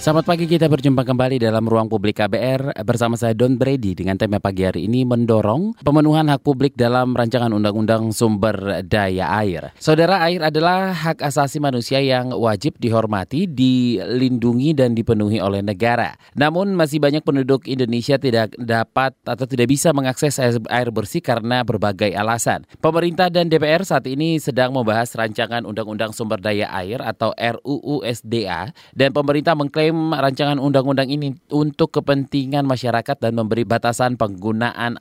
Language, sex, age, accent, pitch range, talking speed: Indonesian, male, 20-39, native, 115-145 Hz, 145 wpm